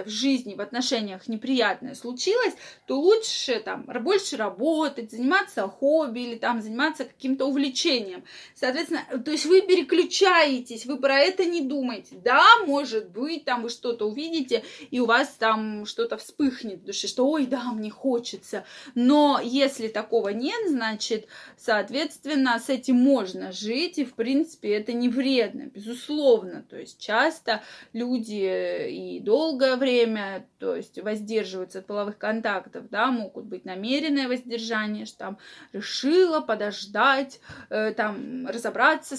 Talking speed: 135 wpm